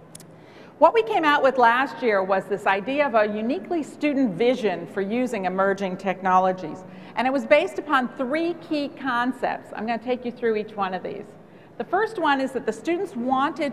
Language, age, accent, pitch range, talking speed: English, 50-69, American, 205-280 Hz, 195 wpm